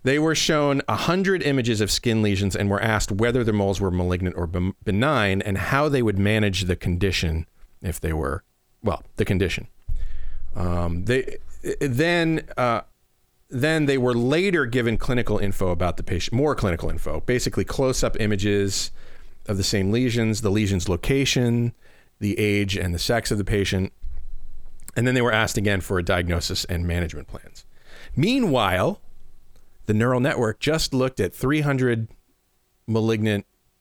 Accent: American